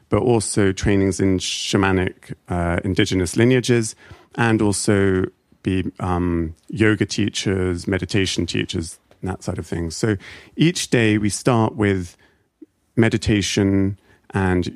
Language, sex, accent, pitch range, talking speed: English, male, British, 95-115 Hz, 120 wpm